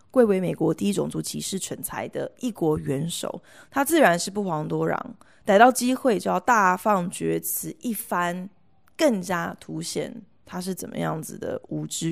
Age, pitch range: 20-39, 170-240 Hz